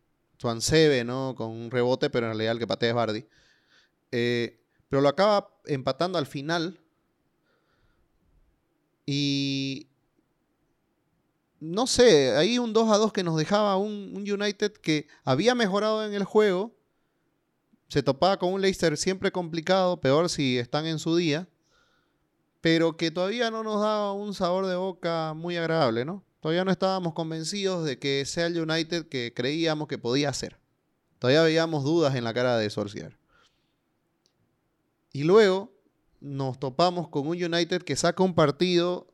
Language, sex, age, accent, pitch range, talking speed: Spanish, male, 30-49, Venezuelan, 130-180 Hz, 150 wpm